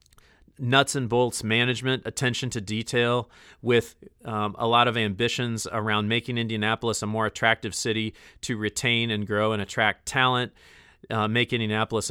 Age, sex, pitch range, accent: 40-59, male, 105-120 Hz, American